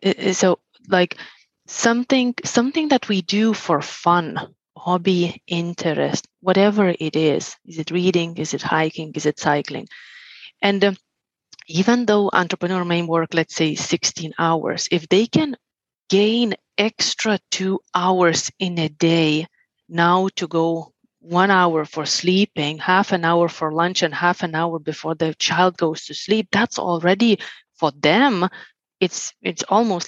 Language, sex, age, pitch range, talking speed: English, female, 30-49, 165-200 Hz, 145 wpm